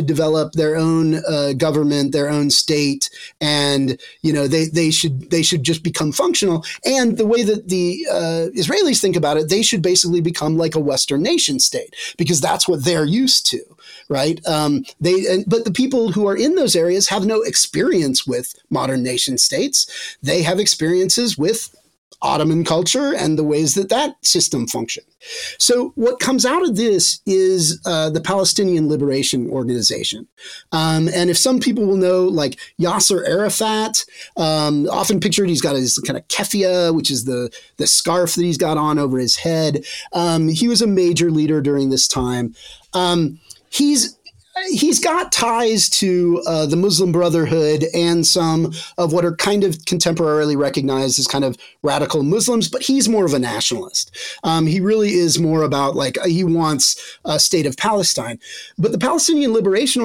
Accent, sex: American, male